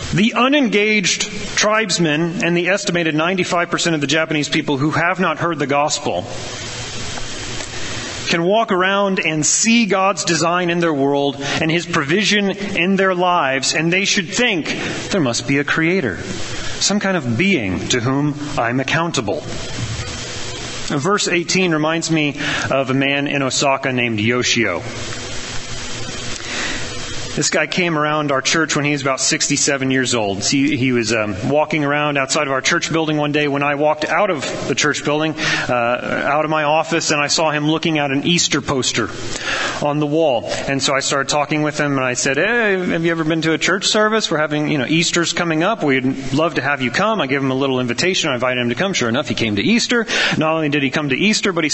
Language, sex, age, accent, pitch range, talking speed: English, male, 30-49, American, 140-175 Hz, 195 wpm